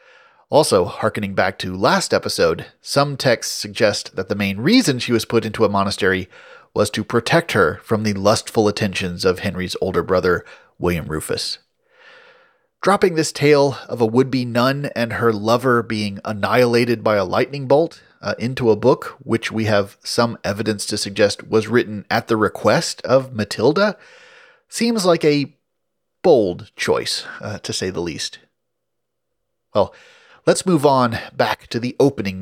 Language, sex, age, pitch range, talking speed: English, male, 30-49, 105-150 Hz, 155 wpm